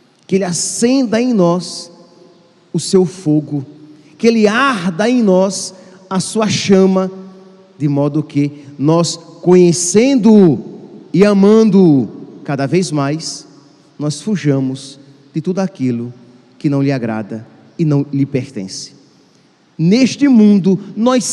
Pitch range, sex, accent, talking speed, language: 170-235 Hz, male, Brazilian, 120 wpm, Portuguese